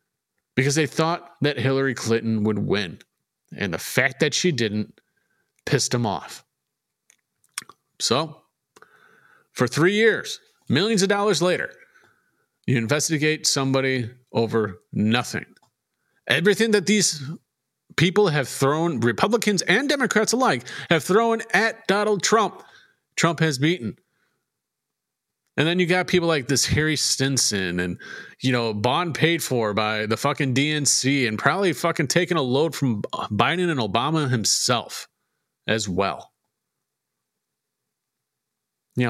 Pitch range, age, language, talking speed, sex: 125-180 Hz, 40-59, English, 125 wpm, male